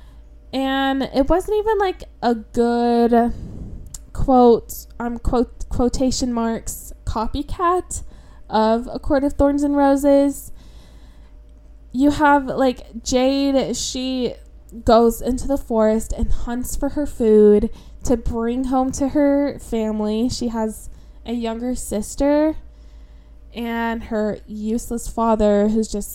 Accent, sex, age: American, female, 10-29